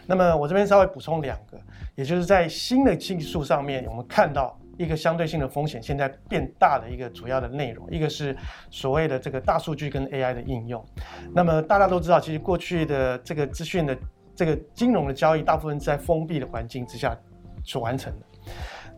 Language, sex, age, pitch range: Chinese, male, 30-49, 130-170 Hz